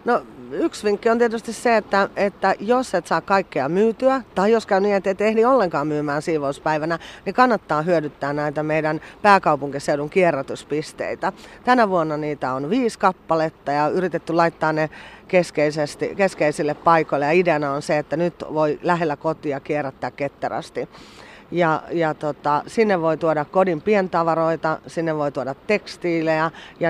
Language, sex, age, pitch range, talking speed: Finnish, female, 30-49, 150-190 Hz, 145 wpm